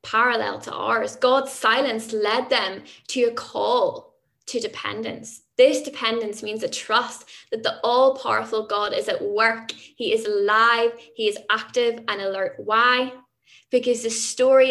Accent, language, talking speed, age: British, English, 145 wpm, 10-29